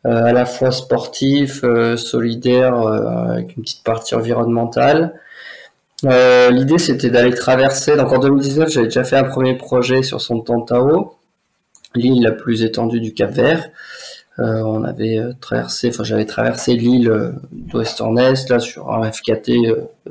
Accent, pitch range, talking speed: French, 115-130 Hz, 160 wpm